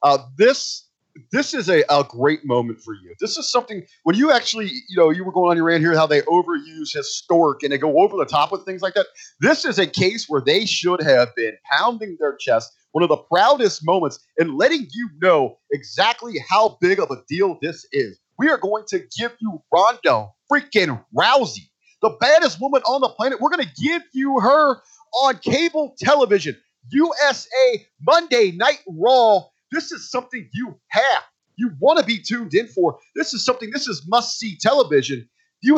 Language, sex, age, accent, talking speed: English, male, 30-49, American, 195 wpm